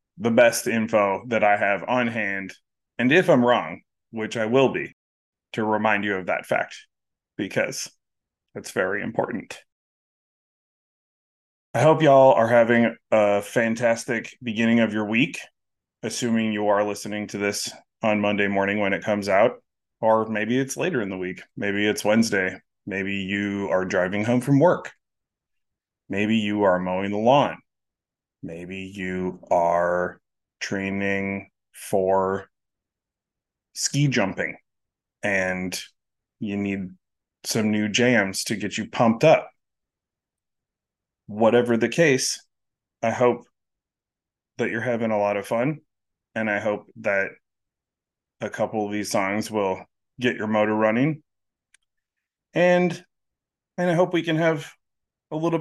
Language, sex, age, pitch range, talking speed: English, male, 20-39, 100-120 Hz, 135 wpm